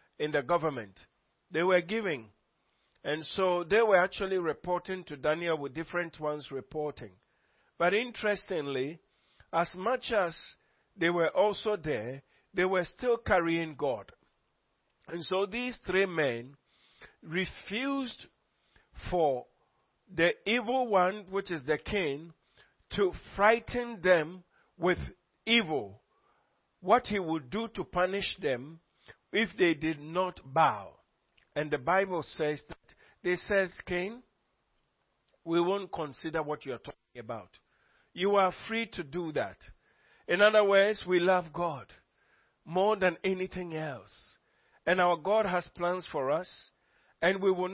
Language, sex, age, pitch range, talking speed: English, male, 50-69, 160-200 Hz, 130 wpm